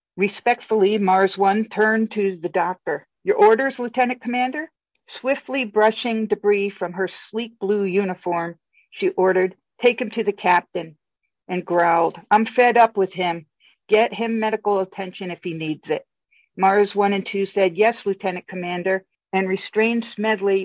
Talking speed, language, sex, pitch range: 150 wpm, English, female, 185-225 Hz